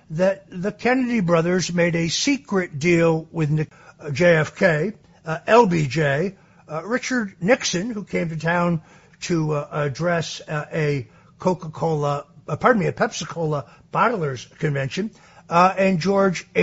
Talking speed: 125 wpm